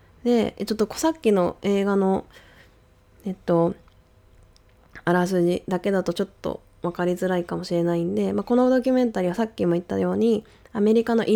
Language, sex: Japanese, female